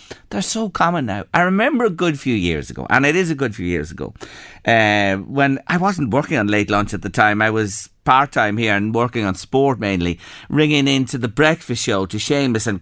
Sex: male